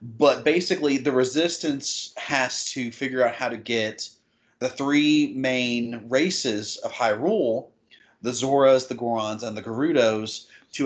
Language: English